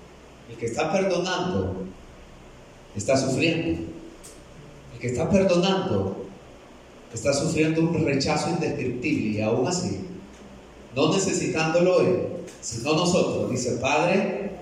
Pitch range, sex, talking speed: 115-185 Hz, male, 100 wpm